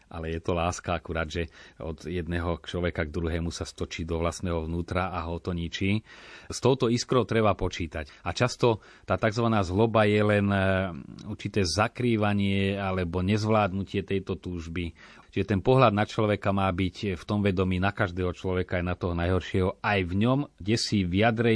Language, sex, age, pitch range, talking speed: Slovak, male, 30-49, 90-105 Hz, 170 wpm